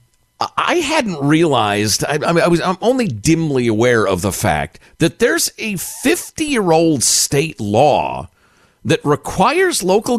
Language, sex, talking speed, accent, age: English, male, 130 wpm, American, 50-69